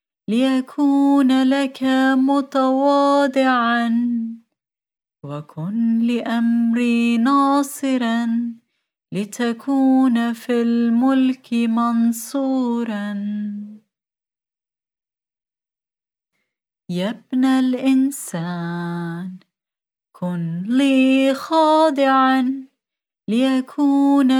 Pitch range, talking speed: 230-265 Hz, 40 wpm